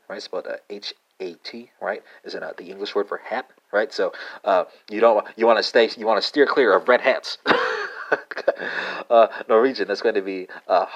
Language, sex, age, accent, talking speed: English, male, 30-49, American, 210 wpm